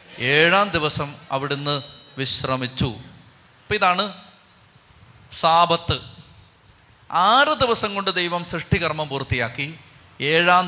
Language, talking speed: Malayalam, 80 wpm